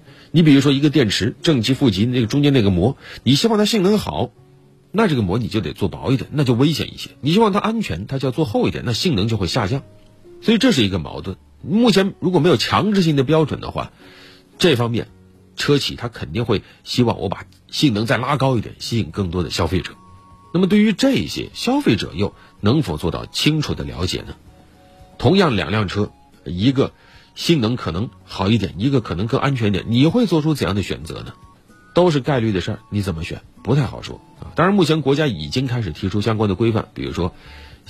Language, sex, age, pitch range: Chinese, male, 50-69, 95-140 Hz